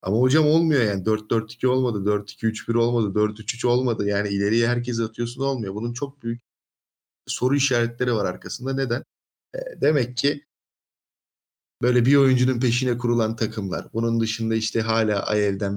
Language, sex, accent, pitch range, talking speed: Turkish, male, native, 100-120 Hz, 145 wpm